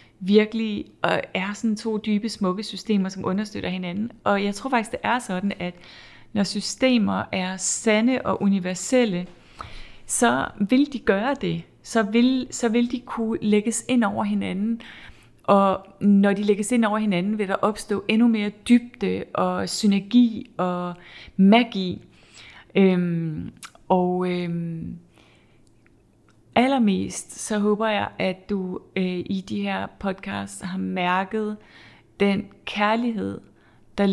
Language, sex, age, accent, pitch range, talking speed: Danish, female, 30-49, native, 185-215 Hz, 125 wpm